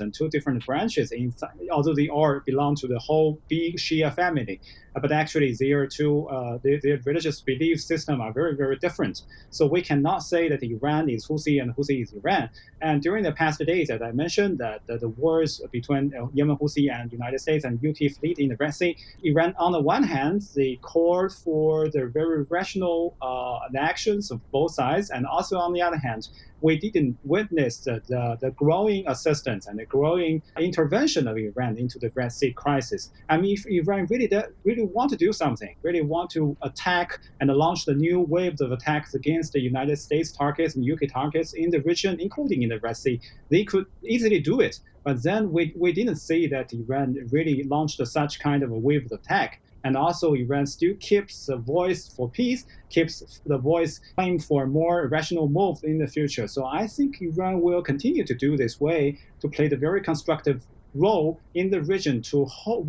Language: English